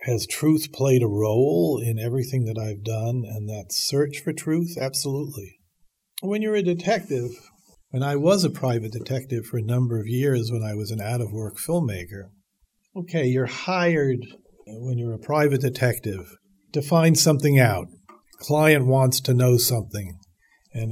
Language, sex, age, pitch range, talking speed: English, male, 50-69, 110-135 Hz, 160 wpm